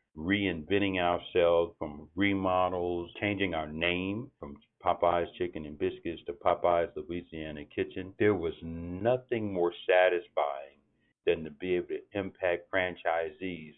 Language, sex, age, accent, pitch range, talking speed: English, male, 60-79, American, 85-110 Hz, 120 wpm